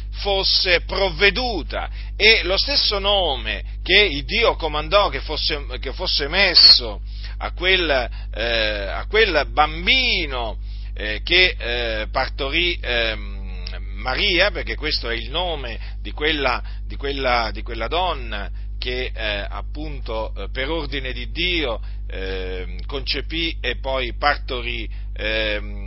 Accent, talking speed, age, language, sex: native, 120 wpm, 40-59, Italian, male